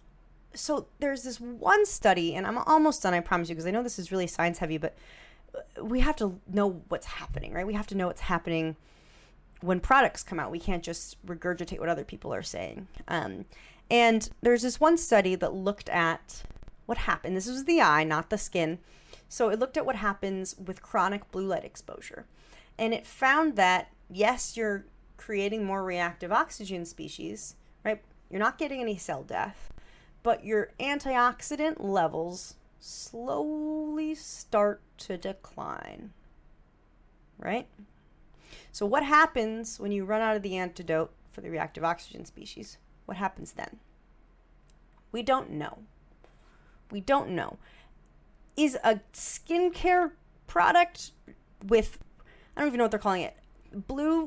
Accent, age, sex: American, 30-49, female